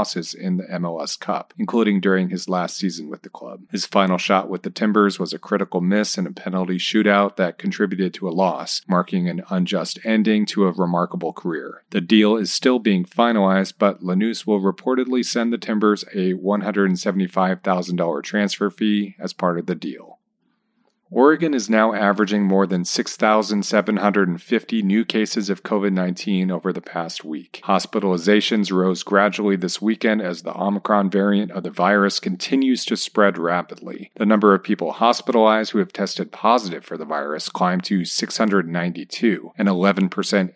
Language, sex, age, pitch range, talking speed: English, male, 40-59, 95-115 Hz, 160 wpm